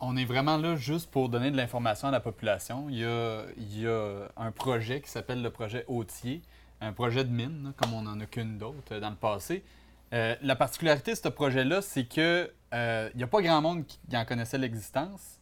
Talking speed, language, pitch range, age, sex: 220 wpm, French, 115-145 Hz, 30-49, male